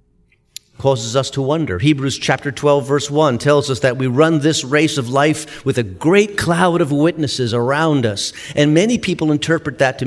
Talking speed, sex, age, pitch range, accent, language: 190 wpm, male, 50-69, 125-155 Hz, American, English